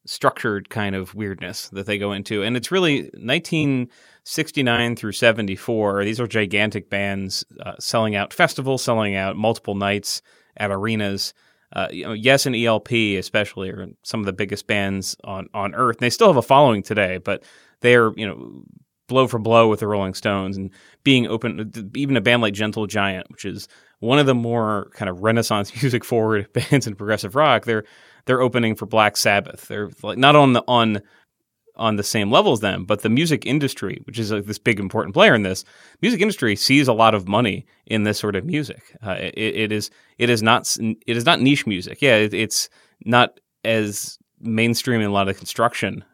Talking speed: 200 wpm